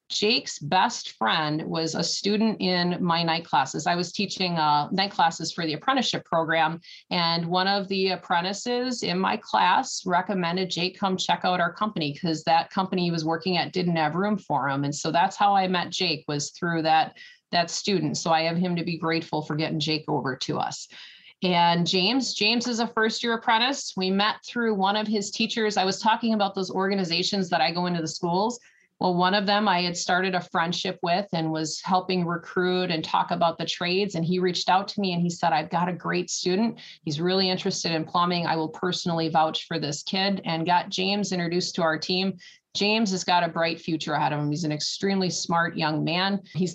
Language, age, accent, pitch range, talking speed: English, 30-49, American, 165-195 Hz, 215 wpm